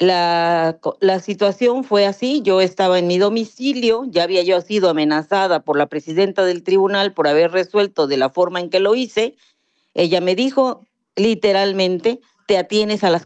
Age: 40-59